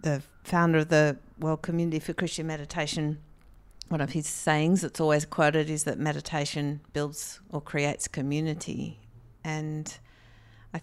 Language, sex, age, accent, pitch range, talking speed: English, female, 50-69, Australian, 145-165 Hz, 140 wpm